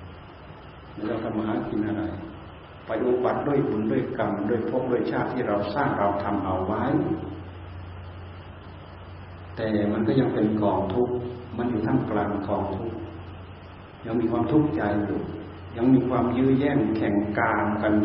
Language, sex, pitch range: Thai, male, 90-120 Hz